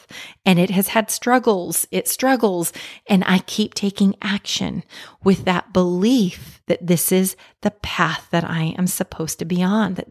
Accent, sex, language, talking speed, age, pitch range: American, female, English, 165 wpm, 30-49, 175-210 Hz